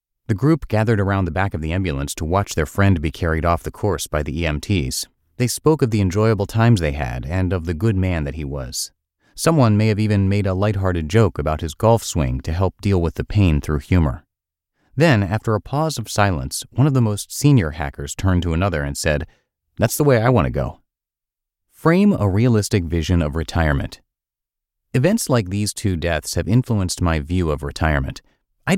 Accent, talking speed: American, 205 wpm